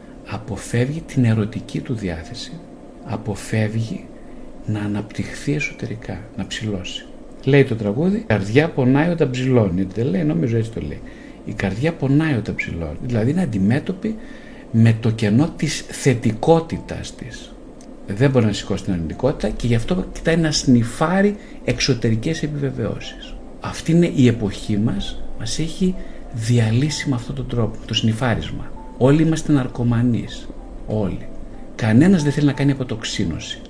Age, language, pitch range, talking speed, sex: 50-69, Greek, 110-160 Hz, 135 wpm, male